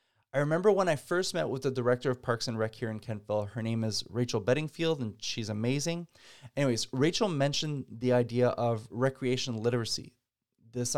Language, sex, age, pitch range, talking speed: English, male, 20-39, 115-145 Hz, 180 wpm